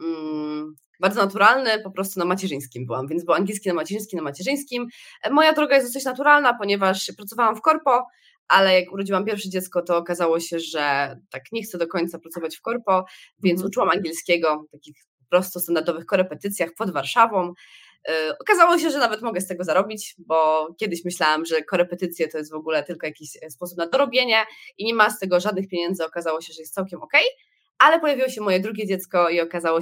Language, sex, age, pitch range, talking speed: Polish, female, 20-39, 170-225 Hz, 185 wpm